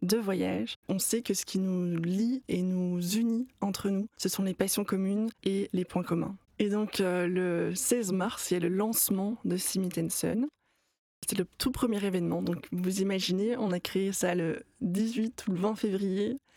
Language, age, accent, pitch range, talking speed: French, 20-39, French, 180-215 Hz, 195 wpm